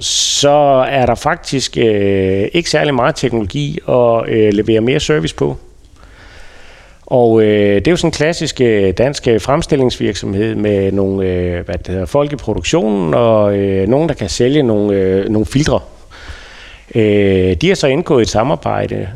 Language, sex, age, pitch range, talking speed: Danish, male, 30-49, 95-125 Hz, 150 wpm